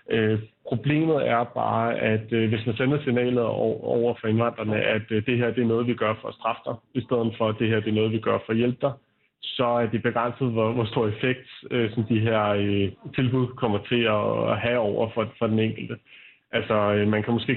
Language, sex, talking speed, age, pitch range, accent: Danish, male, 240 wpm, 30-49, 110-130 Hz, native